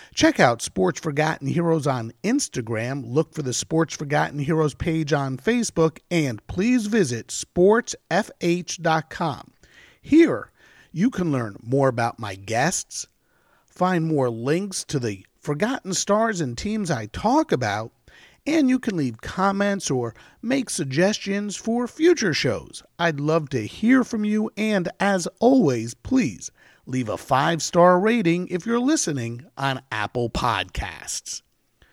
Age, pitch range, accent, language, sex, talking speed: 50-69, 135-200 Hz, American, English, male, 135 wpm